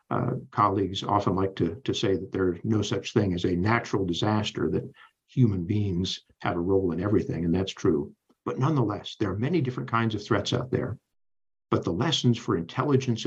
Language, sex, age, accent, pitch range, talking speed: English, male, 60-79, American, 100-125 Hz, 195 wpm